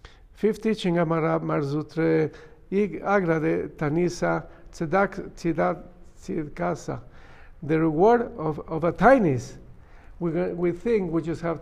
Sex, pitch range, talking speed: male, 155-195 Hz, 110 wpm